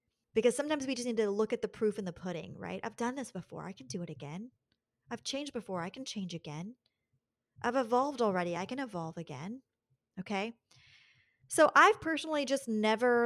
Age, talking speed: 30-49, 195 wpm